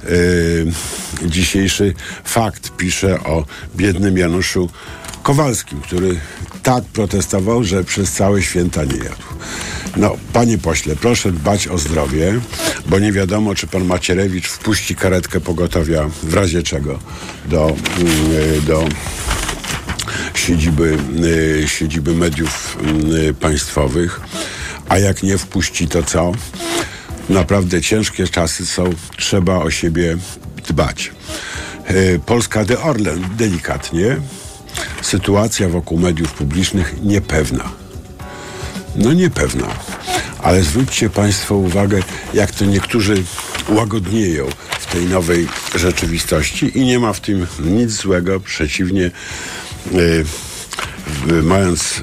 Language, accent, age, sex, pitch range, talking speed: Polish, native, 50-69, male, 80-100 Hz, 105 wpm